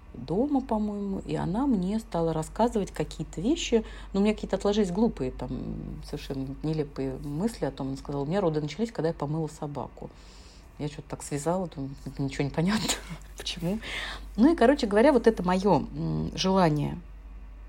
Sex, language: female, Russian